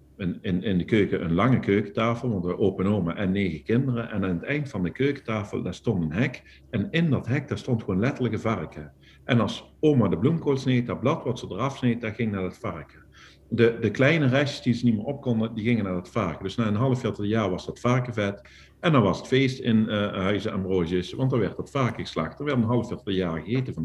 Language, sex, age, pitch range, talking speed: Dutch, male, 50-69, 100-130 Hz, 245 wpm